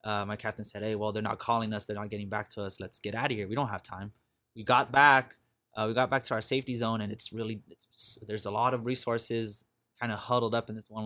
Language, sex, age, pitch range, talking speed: English, male, 20-39, 105-120 Hz, 290 wpm